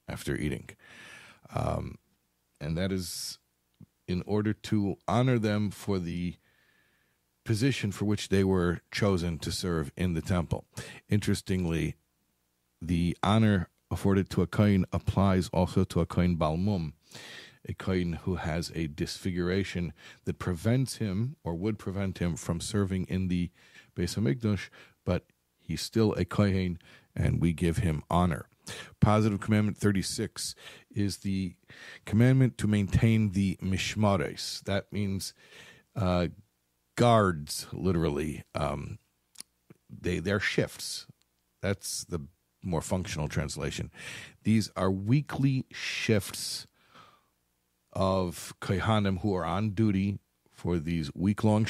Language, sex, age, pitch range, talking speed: English, male, 40-59, 85-105 Hz, 120 wpm